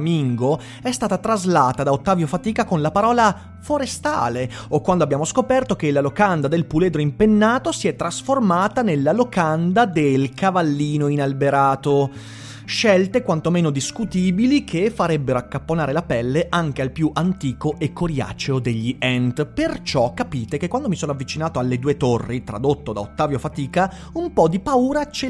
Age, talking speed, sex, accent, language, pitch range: 30-49, 150 wpm, male, native, Italian, 135-215 Hz